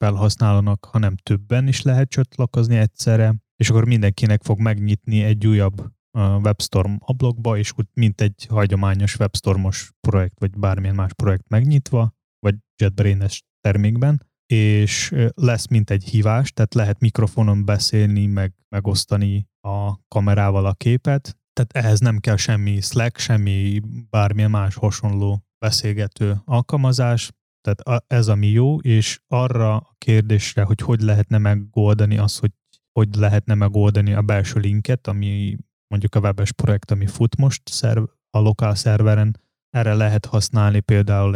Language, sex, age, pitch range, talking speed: Hungarian, male, 20-39, 100-115 Hz, 135 wpm